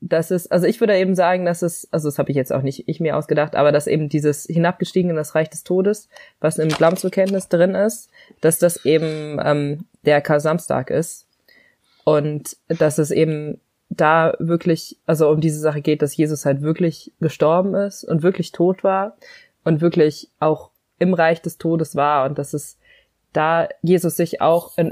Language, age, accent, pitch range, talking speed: German, 20-39, German, 150-175 Hz, 190 wpm